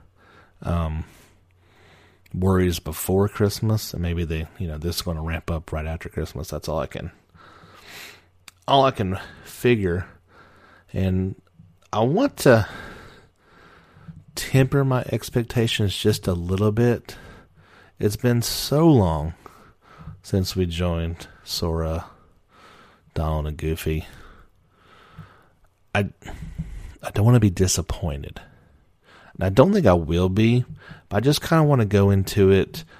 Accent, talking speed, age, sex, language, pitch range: American, 125 wpm, 30-49, male, English, 85-100 Hz